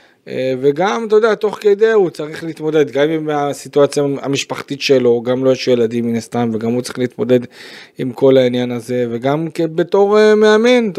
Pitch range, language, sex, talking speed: 125-150 Hz, Hebrew, male, 175 wpm